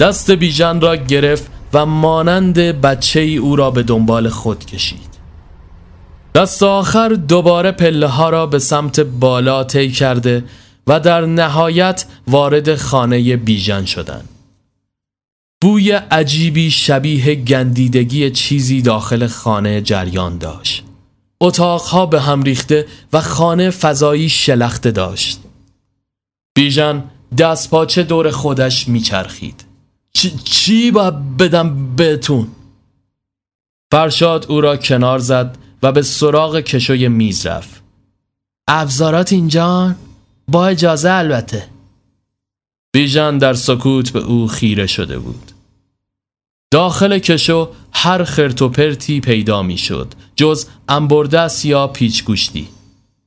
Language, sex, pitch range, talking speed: Persian, male, 105-155 Hz, 105 wpm